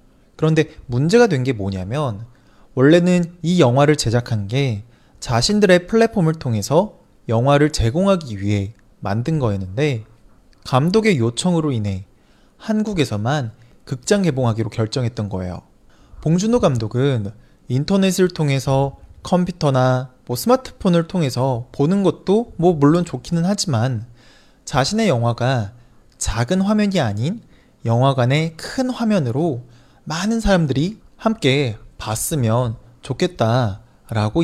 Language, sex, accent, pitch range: Chinese, male, Korean, 115-170 Hz